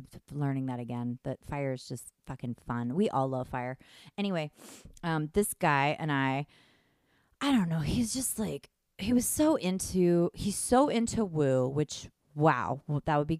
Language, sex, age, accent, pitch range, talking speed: English, female, 30-49, American, 135-190 Hz, 175 wpm